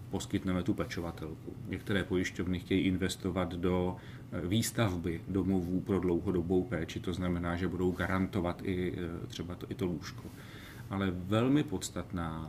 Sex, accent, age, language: male, native, 40-59, Czech